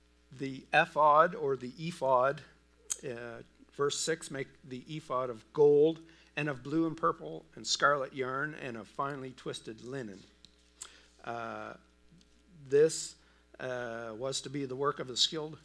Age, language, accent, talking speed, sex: 50-69, English, American, 140 wpm, male